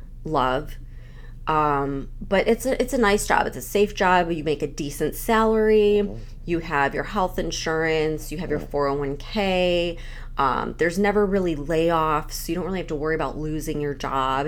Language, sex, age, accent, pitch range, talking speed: English, female, 20-39, American, 135-185 Hz, 170 wpm